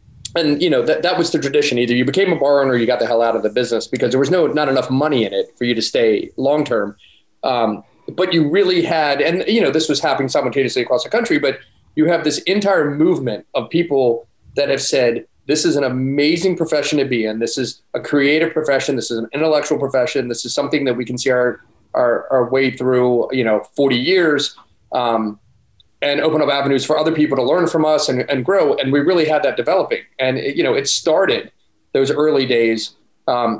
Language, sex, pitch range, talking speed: English, male, 115-150 Hz, 225 wpm